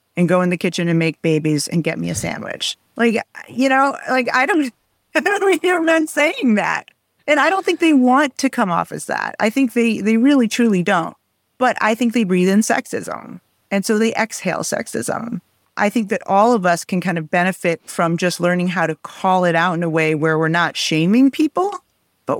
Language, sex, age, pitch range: English, female, 40-59, 160-220 Hz